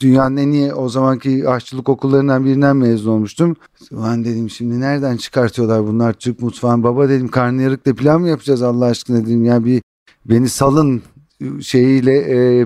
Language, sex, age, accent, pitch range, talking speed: Turkish, male, 50-69, native, 120-135 Hz, 160 wpm